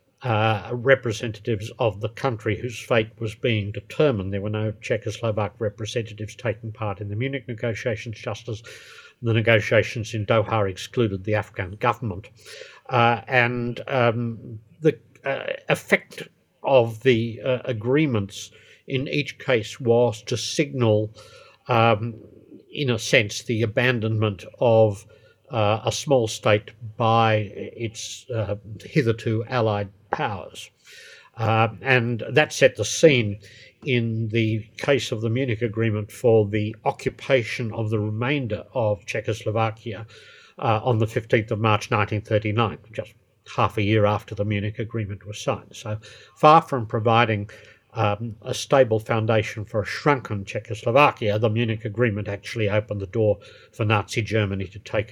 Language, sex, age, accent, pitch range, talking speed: English, male, 60-79, British, 105-120 Hz, 135 wpm